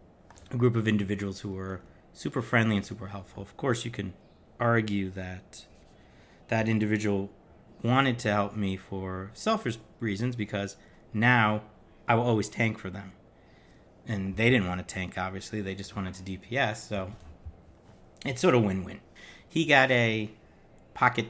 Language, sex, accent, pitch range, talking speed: English, male, American, 95-120 Hz, 155 wpm